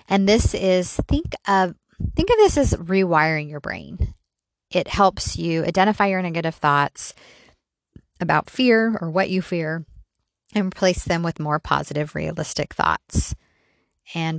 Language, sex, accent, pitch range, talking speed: English, female, American, 155-185 Hz, 140 wpm